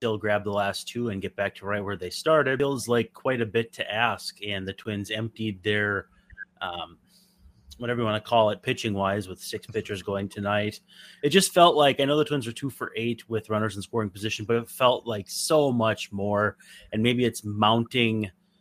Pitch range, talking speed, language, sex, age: 110-145 Hz, 215 wpm, English, male, 30-49